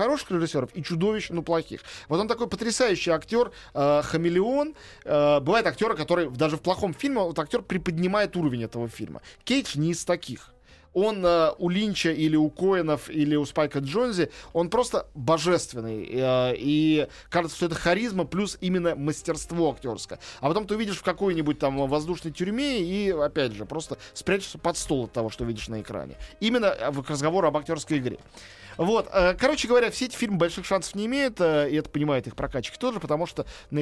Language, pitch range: Russian, 140-185 Hz